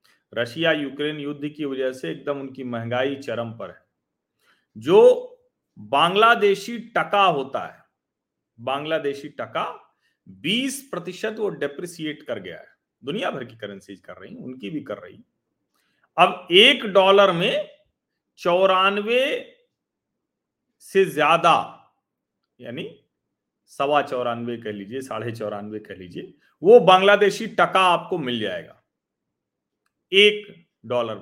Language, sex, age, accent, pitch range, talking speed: Hindi, male, 40-59, native, 130-210 Hz, 115 wpm